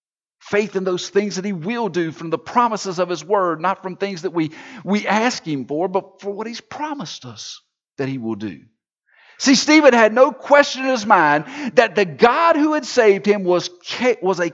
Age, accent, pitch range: 50-69, American, 190-270 Hz